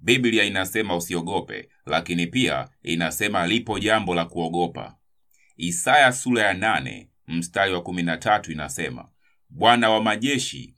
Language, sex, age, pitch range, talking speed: Swahili, male, 30-49, 85-110 Hz, 115 wpm